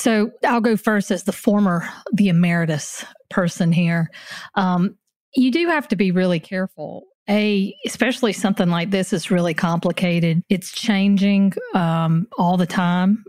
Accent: American